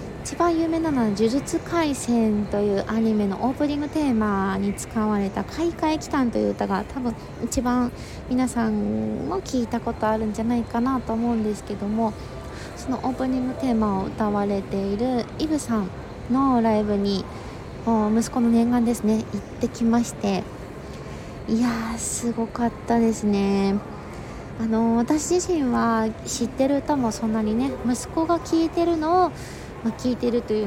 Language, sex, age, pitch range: Japanese, female, 20-39, 215-270 Hz